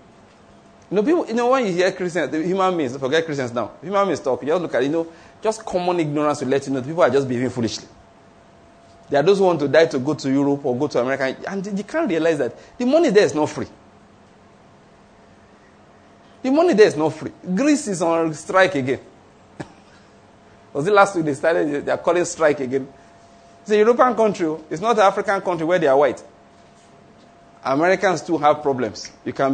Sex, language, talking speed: male, English, 215 wpm